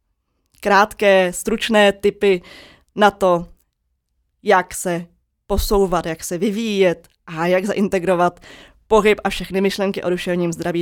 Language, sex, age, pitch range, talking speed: Czech, female, 20-39, 175-200 Hz, 115 wpm